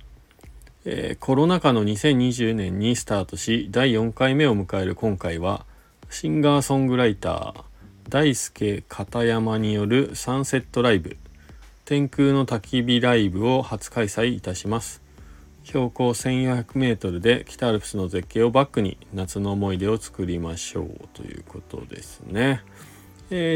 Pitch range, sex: 95-125 Hz, male